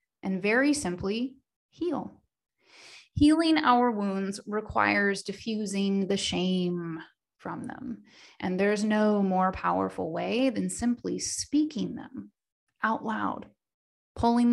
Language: English